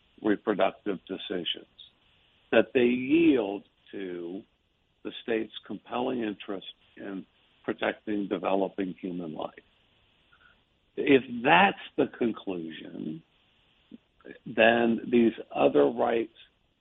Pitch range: 100-115 Hz